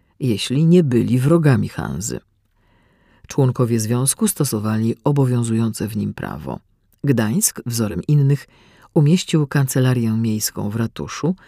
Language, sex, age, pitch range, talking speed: Polish, female, 40-59, 110-145 Hz, 105 wpm